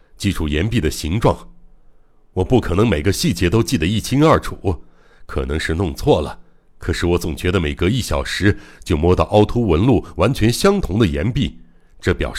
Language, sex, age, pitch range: Chinese, male, 60-79, 80-110 Hz